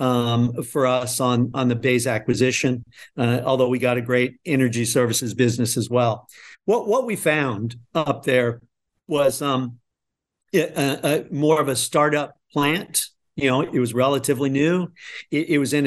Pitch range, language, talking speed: 125-145 Hz, English, 165 wpm